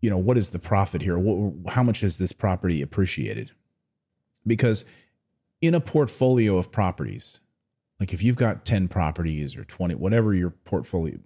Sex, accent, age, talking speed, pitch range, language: male, American, 30-49, 160 wpm, 85-110 Hz, English